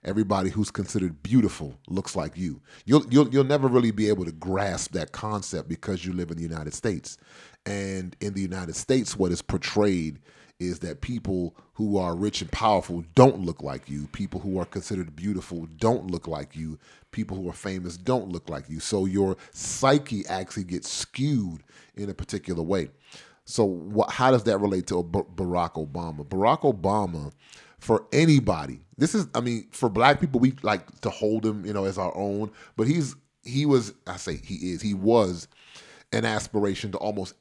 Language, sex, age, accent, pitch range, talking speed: English, male, 30-49, American, 90-110 Hz, 185 wpm